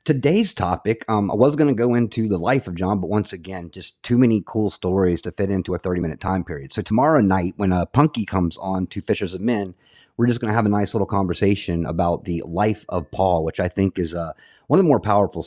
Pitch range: 90-110 Hz